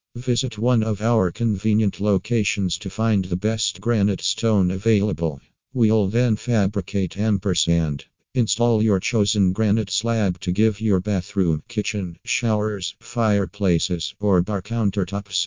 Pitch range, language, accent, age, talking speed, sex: 95-110 Hz, English, American, 50-69, 125 wpm, male